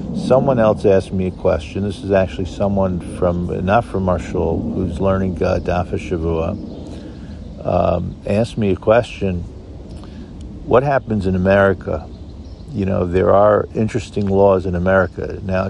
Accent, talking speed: American, 140 wpm